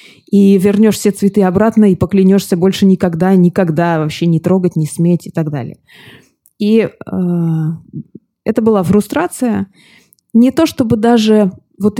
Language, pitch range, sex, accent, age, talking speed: Russian, 175-220 Hz, female, native, 20-39, 140 wpm